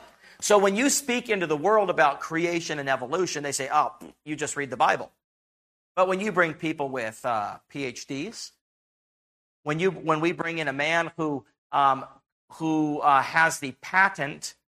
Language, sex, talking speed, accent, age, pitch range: English, male, 170 wpm, American, 40-59, 140-170 Hz